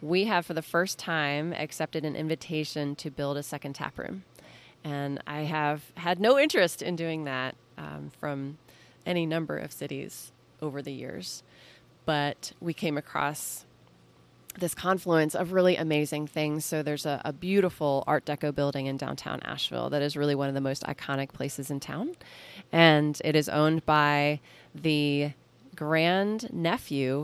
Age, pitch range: 30-49, 145-170 Hz